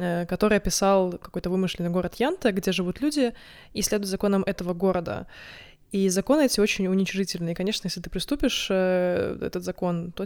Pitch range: 185-220 Hz